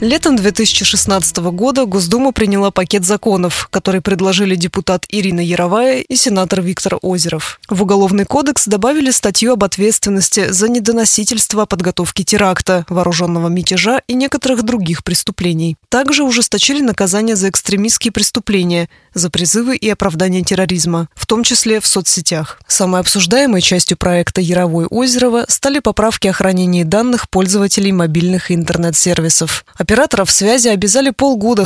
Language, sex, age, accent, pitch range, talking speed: Russian, female, 20-39, native, 175-230 Hz, 125 wpm